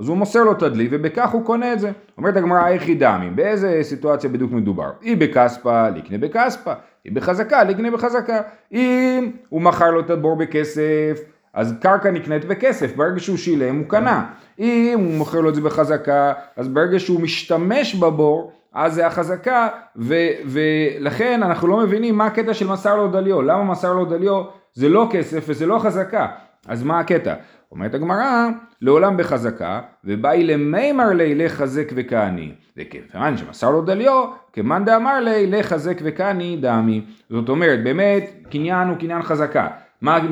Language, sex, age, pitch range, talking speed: Hebrew, male, 30-49, 150-205 Hz, 165 wpm